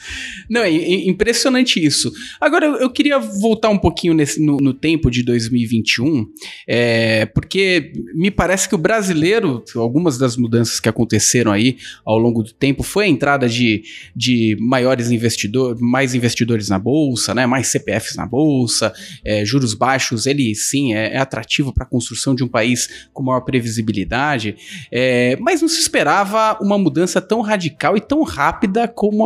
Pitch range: 125-205 Hz